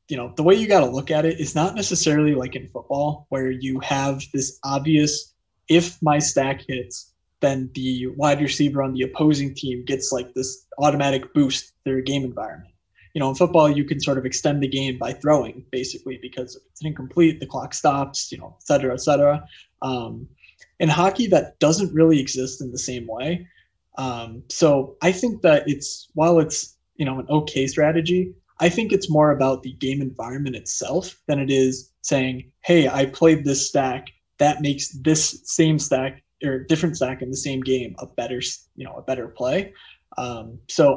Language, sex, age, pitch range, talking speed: English, male, 20-39, 130-155 Hz, 190 wpm